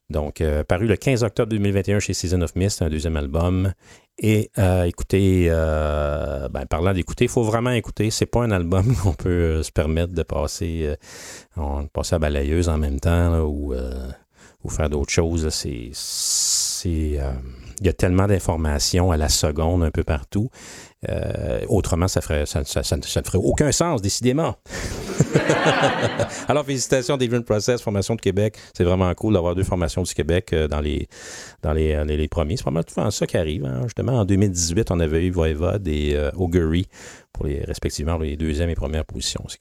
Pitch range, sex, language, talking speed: 80-105 Hz, male, English, 190 wpm